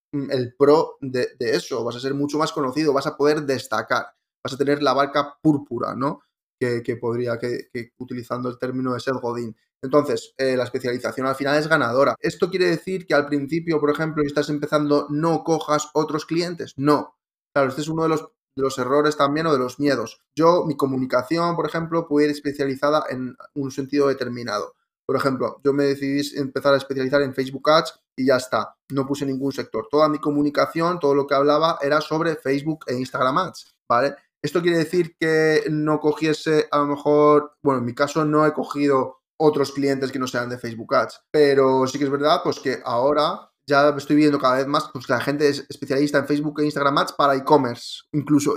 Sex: male